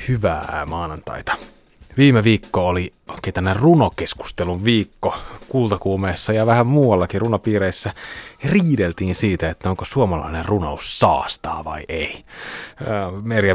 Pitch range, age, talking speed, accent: 85-110 Hz, 30-49, 105 wpm, native